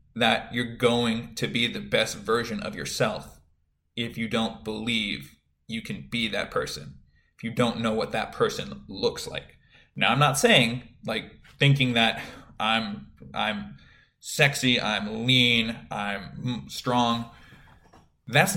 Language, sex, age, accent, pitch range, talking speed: English, male, 20-39, American, 110-135 Hz, 140 wpm